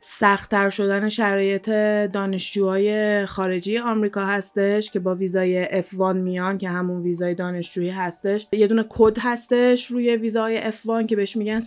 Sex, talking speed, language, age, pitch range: female, 140 wpm, Persian, 20-39, 190-220 Hz